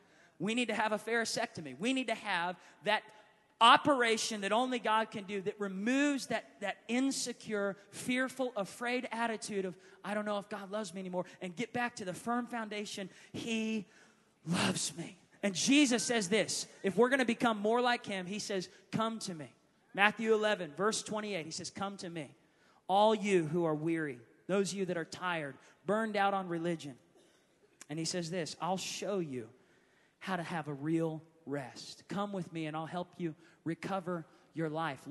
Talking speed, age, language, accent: 185 wpm, 30-49, English, American